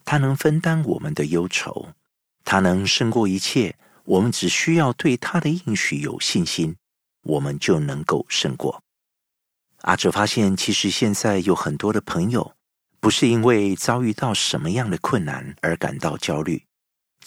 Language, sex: Chinese, male